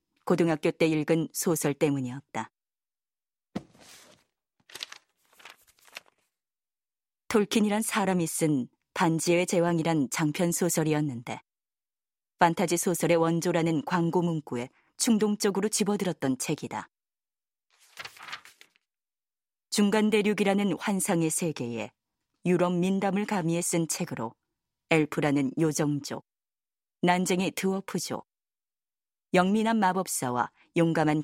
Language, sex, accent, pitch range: Korean, female, native, 150-190 Hz